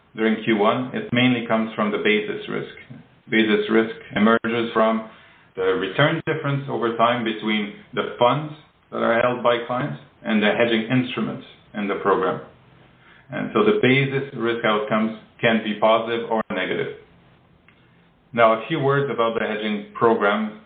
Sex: male